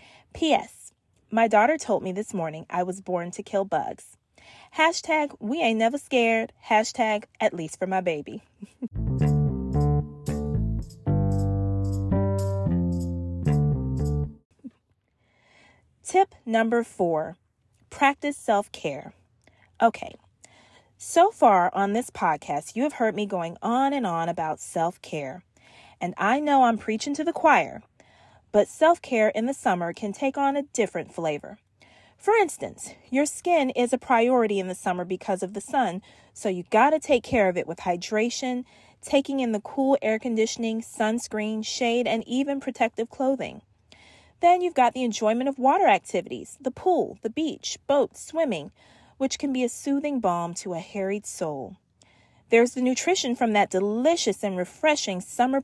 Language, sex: English, female